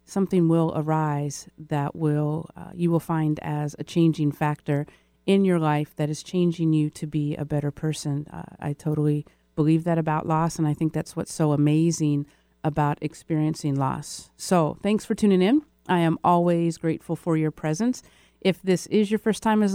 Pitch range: 150-185 Hz